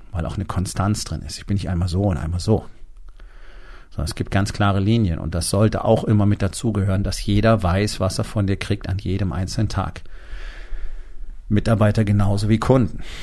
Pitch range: 95-110 Hz